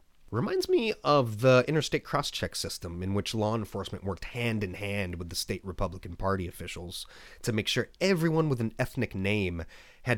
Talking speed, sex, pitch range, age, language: 165 wpm, male, 90-130 Hz, 30-49, English